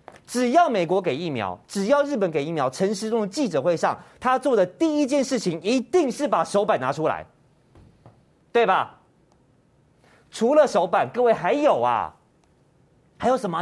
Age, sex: 30-49, male